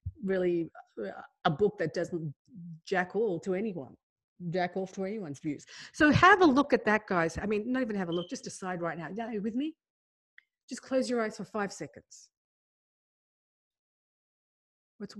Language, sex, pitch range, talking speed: English, female, 170-220 Hz, 170 wpm